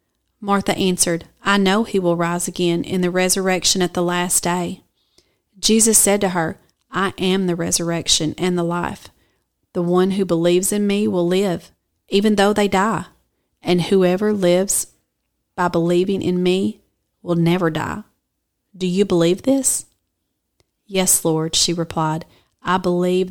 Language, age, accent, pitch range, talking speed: English, 30-49, American, 175-205 Hz, 150 wpm